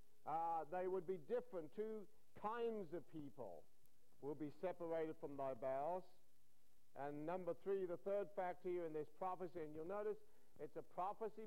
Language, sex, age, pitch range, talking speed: English, male, 60-79, 150-190 Hz, 160 wpm